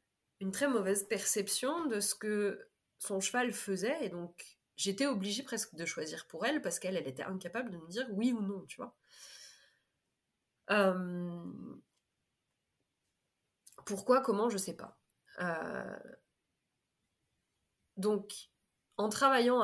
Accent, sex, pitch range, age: French, female, 185-240 Hz, 20-39